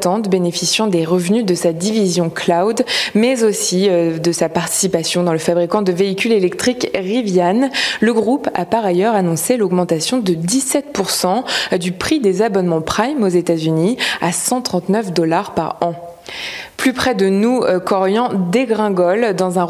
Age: 20-39